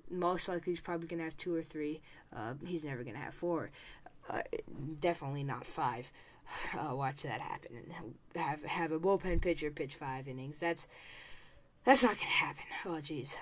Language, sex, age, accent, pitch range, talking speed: English, female, 10-29, American, 155-190 Hz, 170 wpm